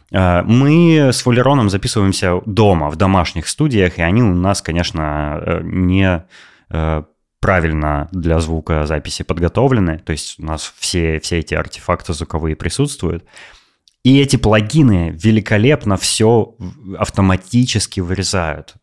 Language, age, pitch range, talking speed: Russian, 20-39, 85-110 Hz, 110 wpm